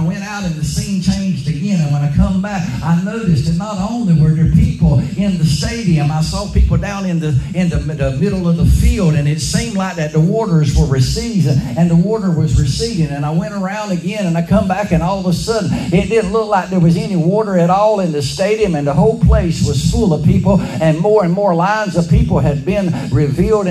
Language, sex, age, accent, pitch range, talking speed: English, male, 60-79, American, 160-200 Hz, 245 wpm